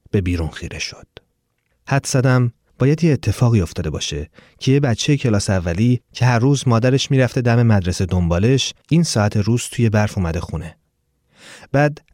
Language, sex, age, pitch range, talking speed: Persian, male, 30-49, 105-145 Hz, 160 wpm